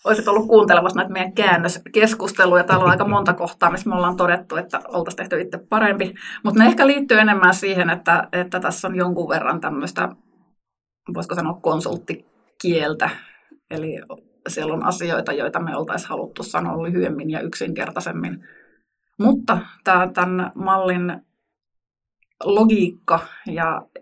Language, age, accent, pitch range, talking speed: Finnish, 20-39, native, 170-195 Hz, 130 wpm